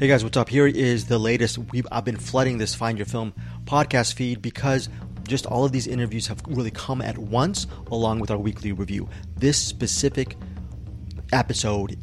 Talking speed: 185 wpm